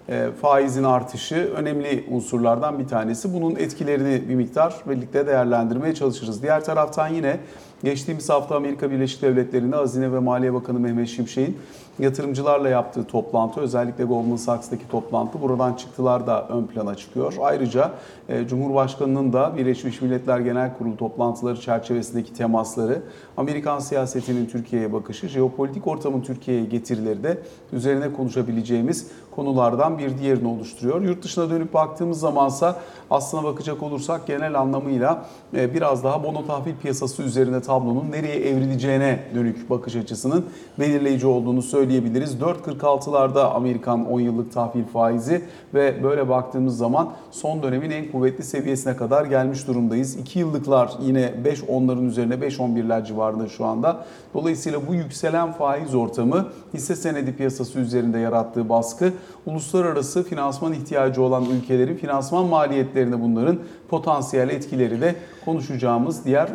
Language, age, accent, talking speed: Turkish, 40-59, native, 130 wpm